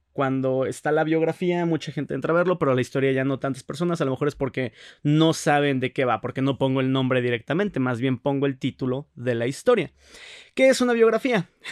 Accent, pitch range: Mexican, 130-170 Hz